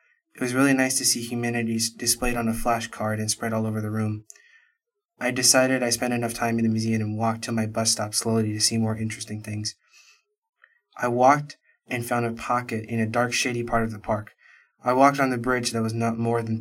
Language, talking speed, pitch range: English, 225 wpm, 115-125 Hz